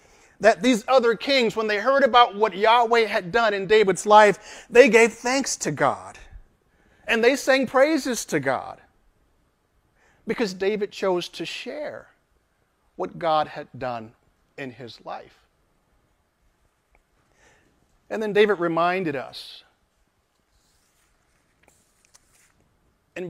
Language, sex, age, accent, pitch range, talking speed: English, male, 40-59, American, 170-230 Hz, 115 wpm